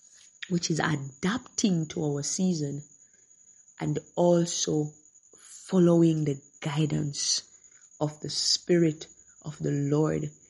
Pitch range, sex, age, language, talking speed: 160-235 Hz, female, 20-39, English, 95 wpm